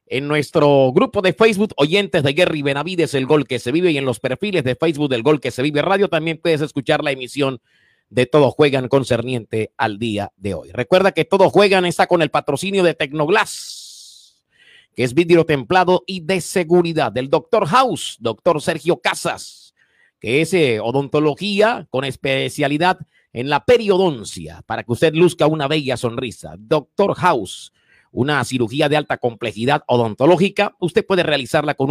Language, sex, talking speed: Spanish, male, 170 wpm